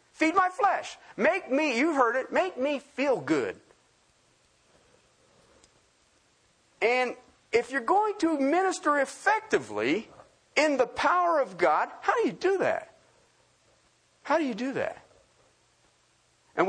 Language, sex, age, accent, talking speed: English, male, 50-69, American, 125 wpm